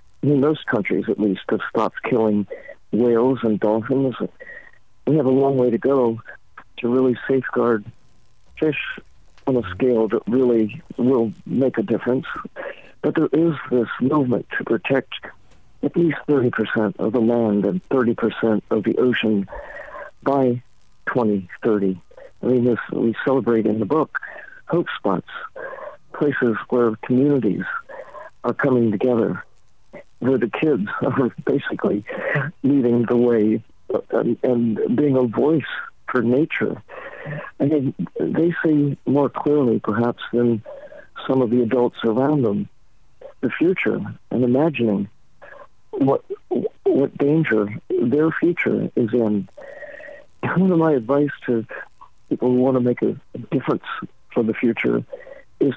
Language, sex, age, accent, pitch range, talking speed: English, male, 60-79, American, 115-145 Hz, 135 wpm